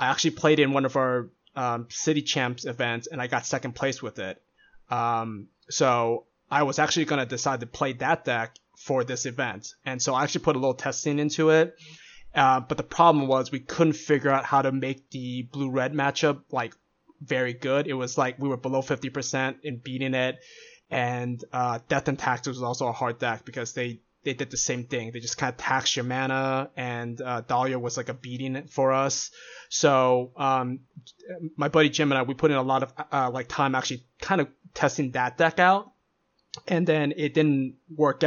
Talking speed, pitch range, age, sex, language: 205 wpm, 125-145 Hz, 20-39, male, English